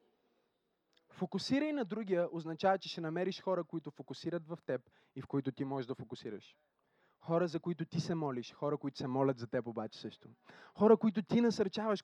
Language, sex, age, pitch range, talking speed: Bulgarian, male, 20-39, 150-205 Hz, 185 wpm